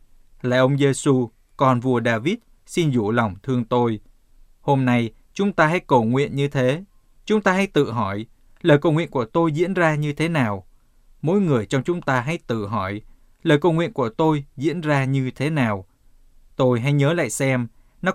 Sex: male